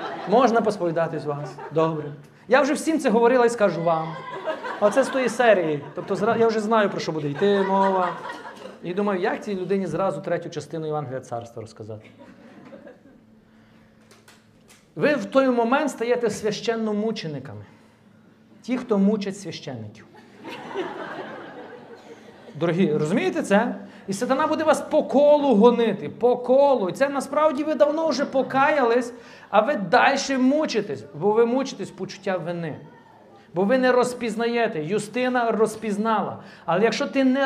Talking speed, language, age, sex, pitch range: 140 wpm, Ukrainian, 40-59, male, 175-255 Hz